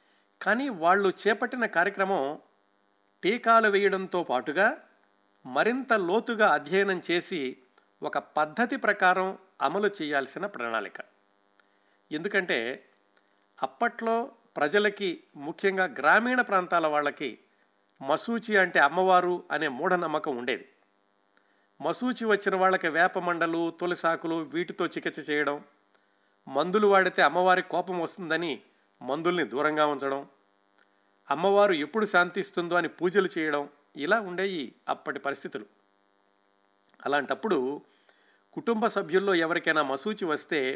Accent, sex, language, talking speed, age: native, male, Telugu, 95 wpm, 50-69